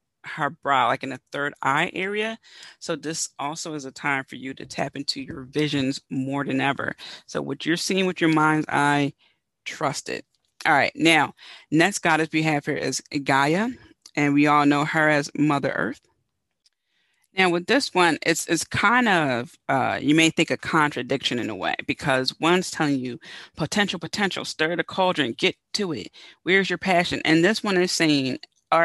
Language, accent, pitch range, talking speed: English, American, 140-175 Hz, 185 wpm